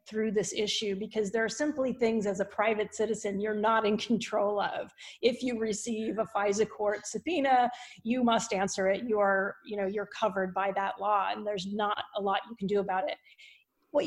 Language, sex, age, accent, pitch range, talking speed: English, female, 30-49, American, 200-230 Hz, 200 wpm